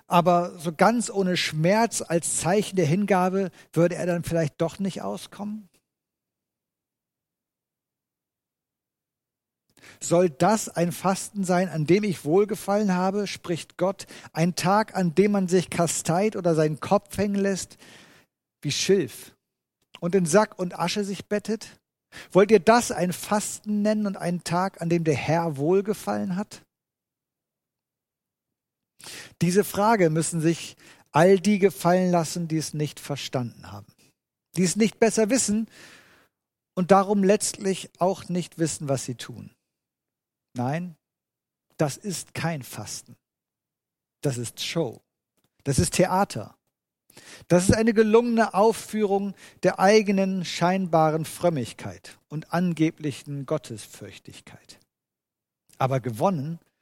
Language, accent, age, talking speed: German, German, 50-69, 120 wpm